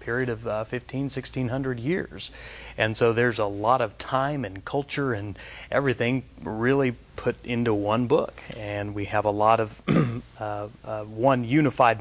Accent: American